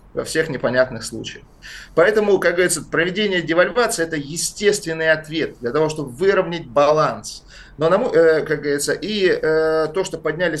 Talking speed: 135 wpm